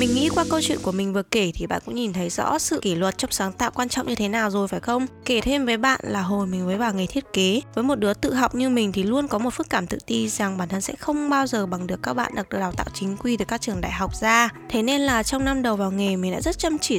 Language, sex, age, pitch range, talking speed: Vietnamese, female, 10-29, 200-270 Hz, 320 wpm